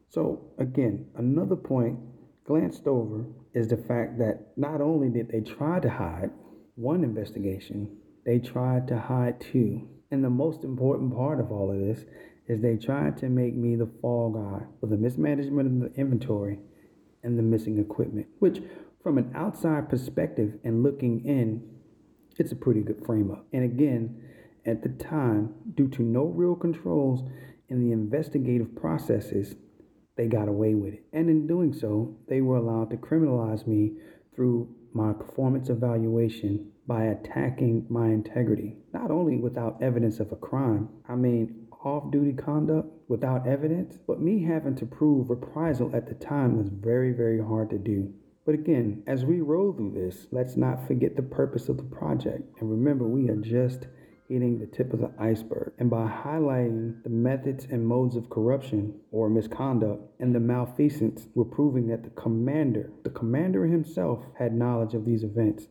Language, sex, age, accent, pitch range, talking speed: English, male, 40-59, American, 110-135 Hz, 170 wpm